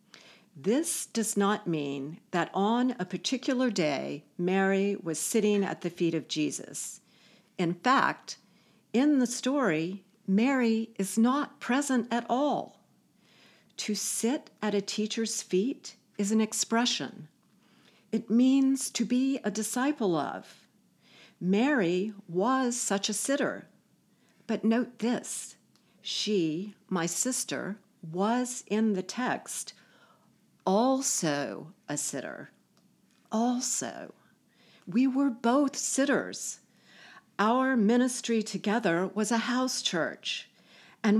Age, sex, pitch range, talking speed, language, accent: 50-69, female, 195-245 Hz, 110 wpm, English, American